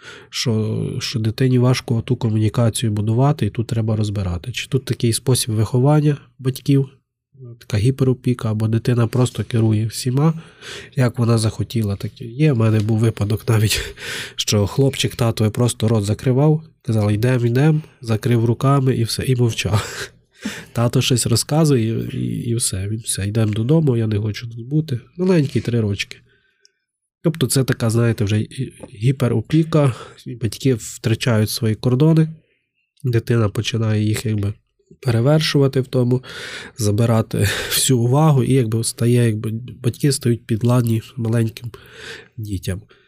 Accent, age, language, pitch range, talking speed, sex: native, 20-39, Ukrainian, 110-135 Hz, 130 wpm, male